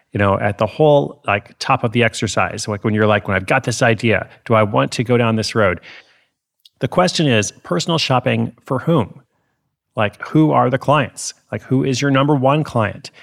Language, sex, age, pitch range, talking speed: English, male, 30-49, 105-130 Hz, 210 wpm